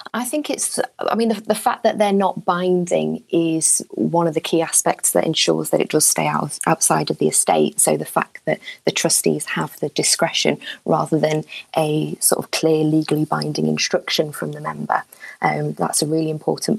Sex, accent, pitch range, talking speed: female, British, 155-185 Hz, 195 wpm